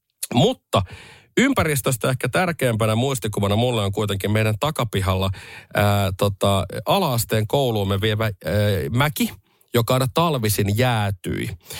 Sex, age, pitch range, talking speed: male, 40-59, 105-135 Hz, 105 wpm